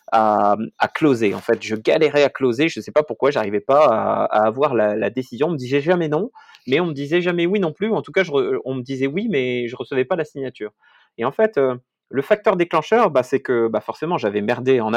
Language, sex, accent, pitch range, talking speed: French, male, French, 120-185 Hz, 275 wpm